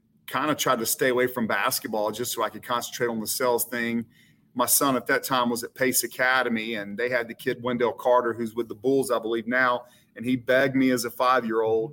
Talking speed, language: 235 wpm, English